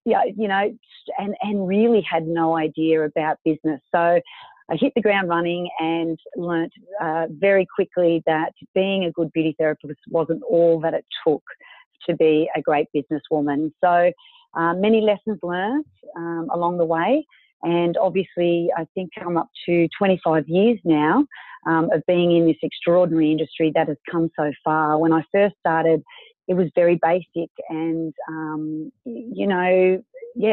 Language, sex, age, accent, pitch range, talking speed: English, female, 40-59, Australian, 160-190 Hz, 165 wpm